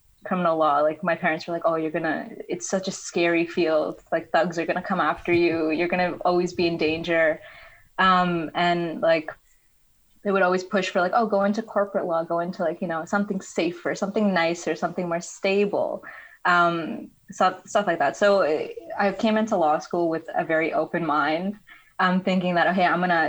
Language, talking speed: English, 200 wpm